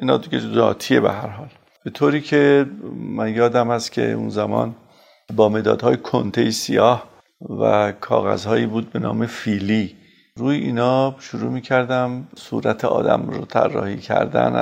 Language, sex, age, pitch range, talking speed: Persian, male, 50-69, 110-130 Hz, 140 wpm